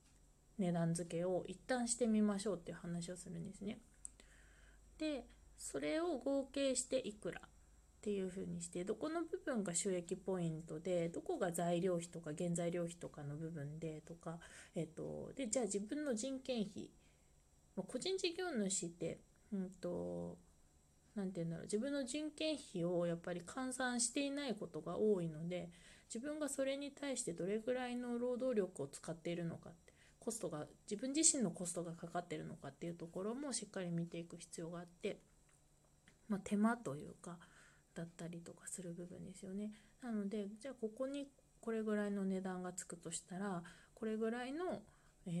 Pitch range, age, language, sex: 165-230 Hz, 20-39, Japanese, female